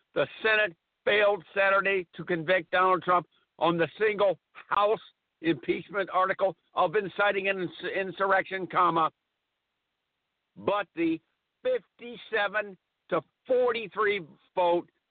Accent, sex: American, male